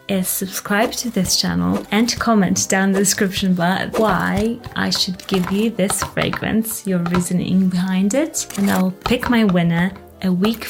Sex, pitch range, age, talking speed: female, 175-205 Hz, 20-39, 170 wpm